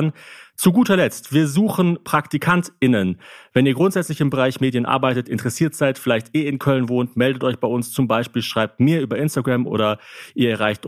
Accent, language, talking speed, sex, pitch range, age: German, German, 180 wpm, male, 105-135 Hz, 40-59